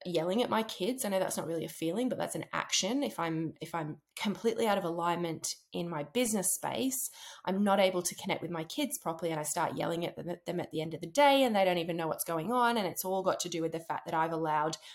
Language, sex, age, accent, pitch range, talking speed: English, female, 20-39, Australian, 165-215 Hz, 275 wpm